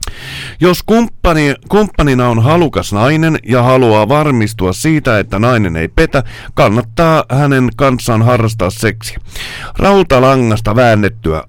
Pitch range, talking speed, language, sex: 105-150 Hz, 110 wpm, Finnish, male